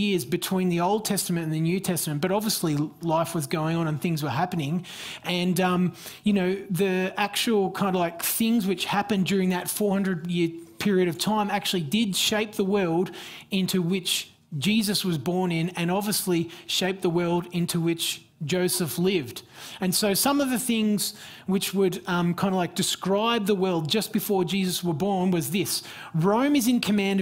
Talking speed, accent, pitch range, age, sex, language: 180 wpm, Australian, 170-205 Hz, 30-49, male, English